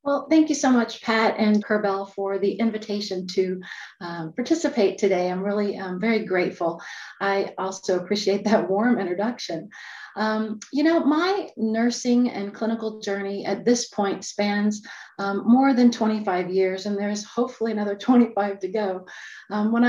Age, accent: 30-49, American